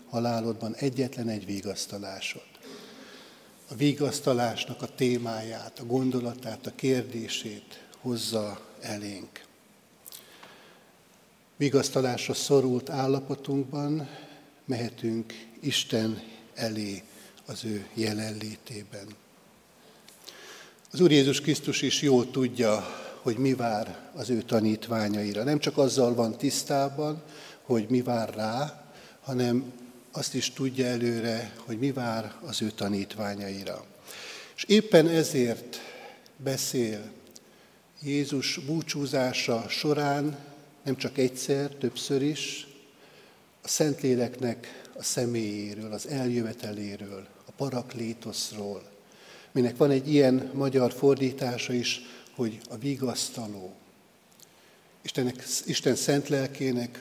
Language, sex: Hungarian, male